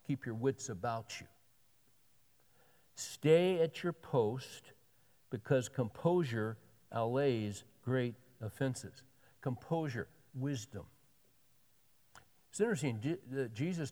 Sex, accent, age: male, American, 60-79